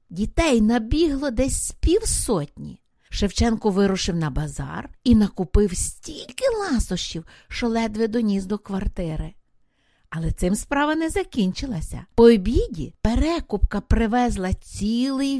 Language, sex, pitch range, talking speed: English, female, 185-260 Hz, 110 wpm